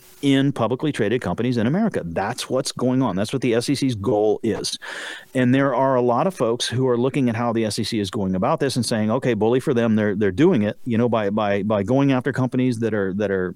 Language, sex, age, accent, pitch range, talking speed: English, male, 40-59, American, 110-130 Hz, 250 wpm